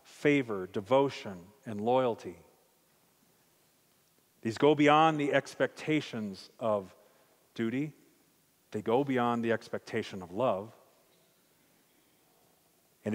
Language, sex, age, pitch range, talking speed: English, male, 40-59, 110-145 Hz, 85 wpm